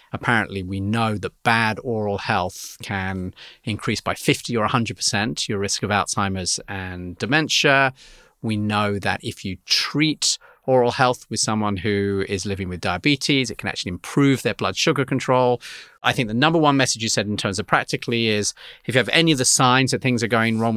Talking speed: 195 wpm